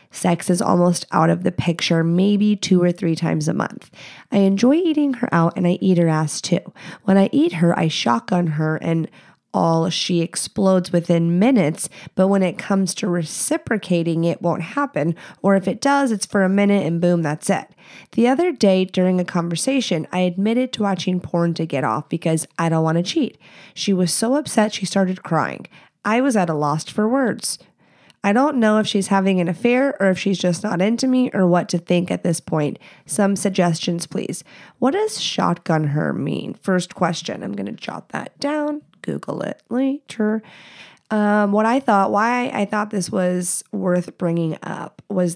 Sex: female